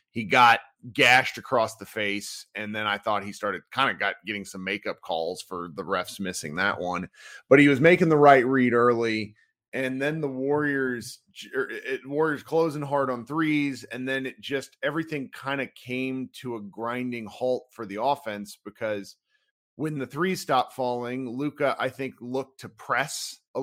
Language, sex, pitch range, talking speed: English, male, 115-145 Hz, 180 wpm